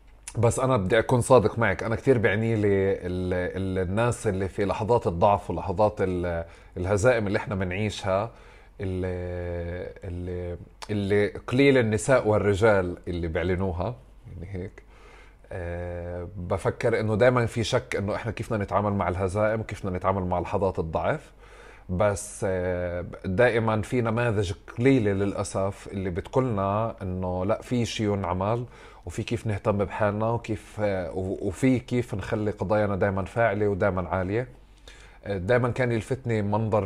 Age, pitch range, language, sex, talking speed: 30-49, 95-115 Hz, Arabic, male, 135 wpm